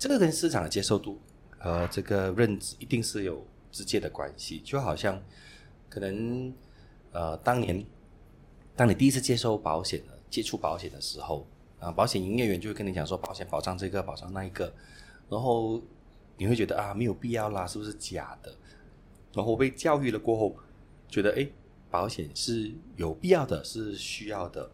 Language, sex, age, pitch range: English, male, 30-49, 90-120 Hz